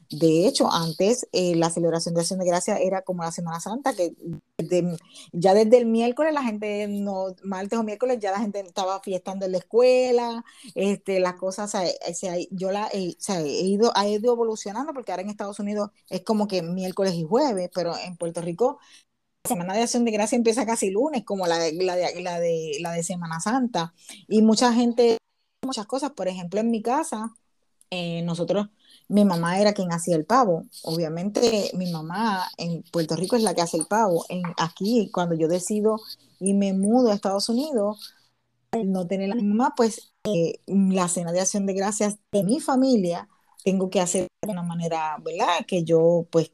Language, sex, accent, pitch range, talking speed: Spanish, female, American, 175-225 Hz, 195 wpm